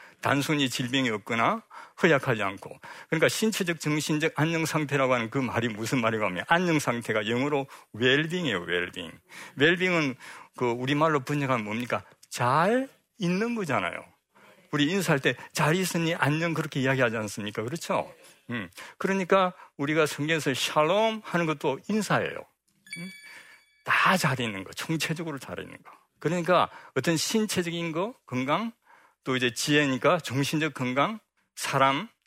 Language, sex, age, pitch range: Korean, male, 50-69, 125-175 Hz